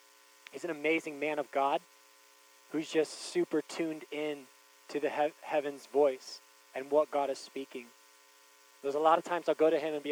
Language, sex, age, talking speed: English, male, 20-39, 185 wpm